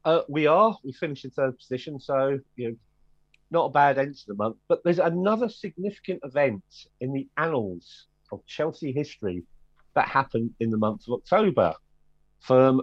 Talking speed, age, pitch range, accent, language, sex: 175 wpm, 40-59, 125-155 Hz, British, English, male